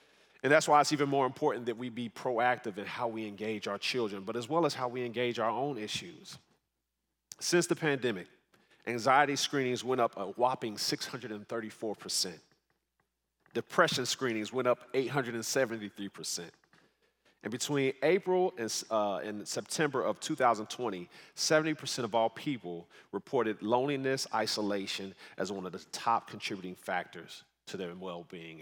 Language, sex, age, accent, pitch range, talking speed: English, male, 40-59, American, 105-135 Hz, 145 wpm